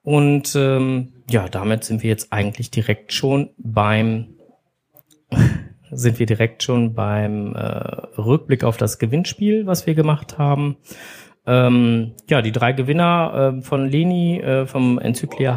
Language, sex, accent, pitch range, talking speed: German, male, German, 110-140 Hz, 140 wpm